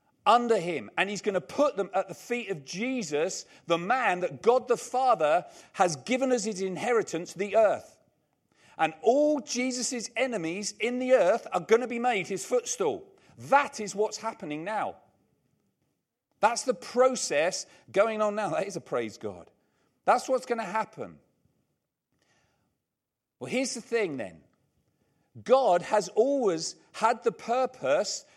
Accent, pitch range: British, 180-250 Hz